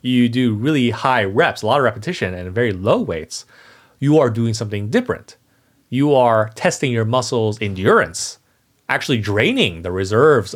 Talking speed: 160 wpm